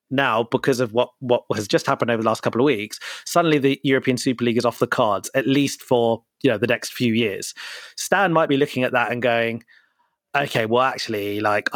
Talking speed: 225 wpm